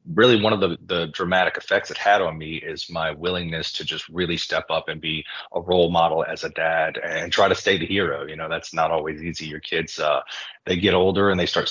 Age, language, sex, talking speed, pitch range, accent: 30-49, English, male, 245 wpm, 80-95 Hz, American